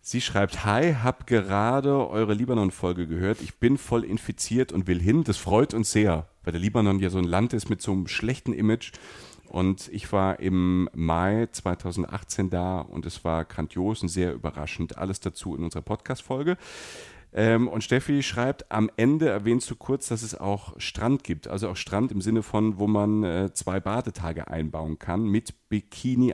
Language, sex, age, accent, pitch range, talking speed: German, male, 40-59, German, 90-120 Hz, 180 wpm